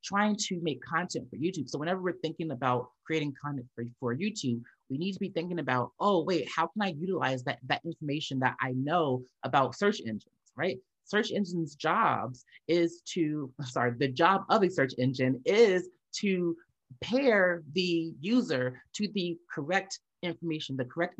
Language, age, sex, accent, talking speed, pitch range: English, 30-49, male, American, 175 wpm, 135-180 Hz